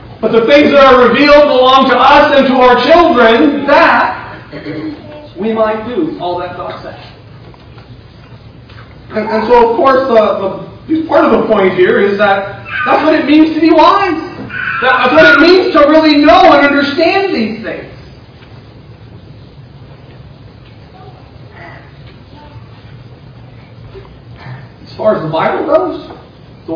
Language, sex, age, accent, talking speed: English, male, 40-59, American, 135 wpm